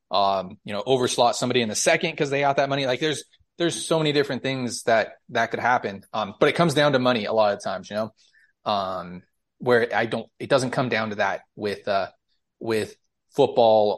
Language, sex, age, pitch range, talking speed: English, male, 20-39, 105-130 Hz, 220 wpm